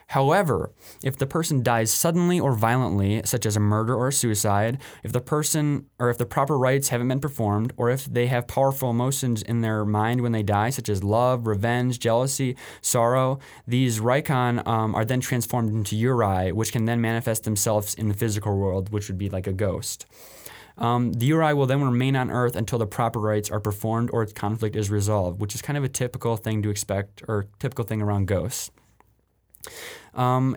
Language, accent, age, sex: English, American, 20-39, male